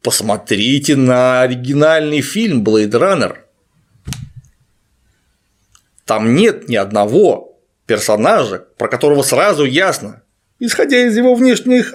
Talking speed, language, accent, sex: 95 wpm, Russian, native, male